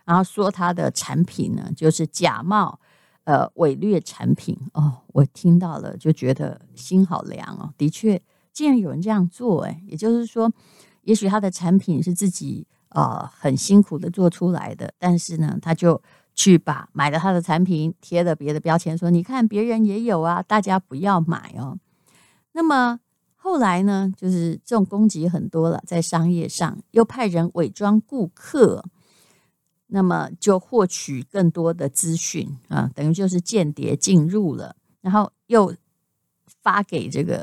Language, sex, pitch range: Chinese, female, 165-205 Hz